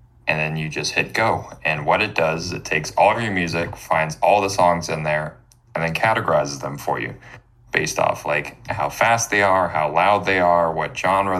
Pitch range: 85-110 Hz